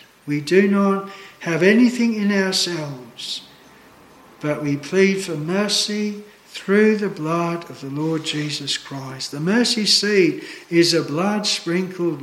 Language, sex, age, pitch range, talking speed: English, male, 60-79, 145-190 Hz, 130 wpm